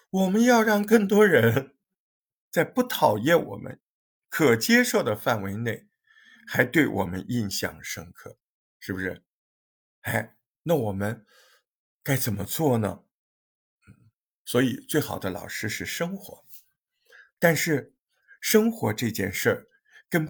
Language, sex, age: Chinese, male, 50-69